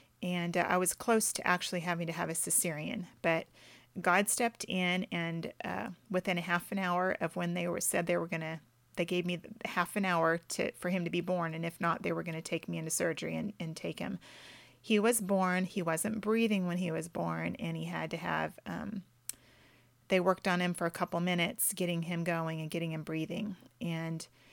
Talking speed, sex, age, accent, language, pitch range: 225 wpm, female, 30-49, American, English, 170-200 Hz